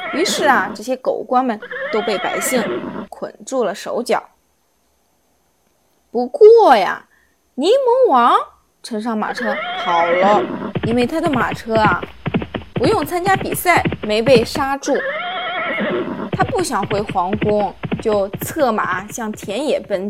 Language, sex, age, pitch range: Chinese, female, 20-39, 215-360 Hz